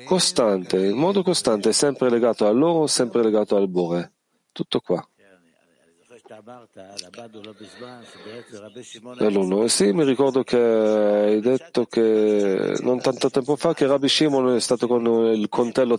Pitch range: 110-135 Hz